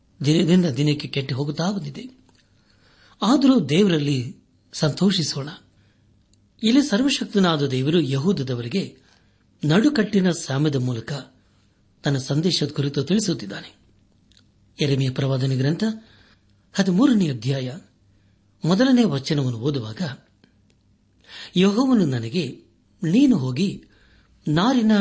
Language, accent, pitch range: Kannada, native, 110-185 Hz